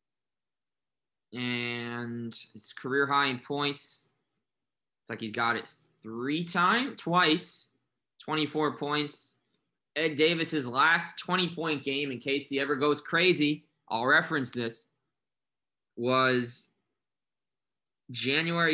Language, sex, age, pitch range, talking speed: English, male, 20-39, 120-140 Hz, 105 wpm